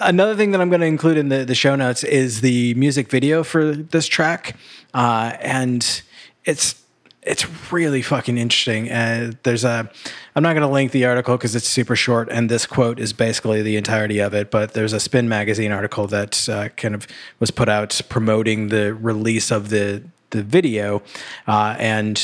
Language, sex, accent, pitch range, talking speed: English, male, American, 110-130 Hz, 195 wpm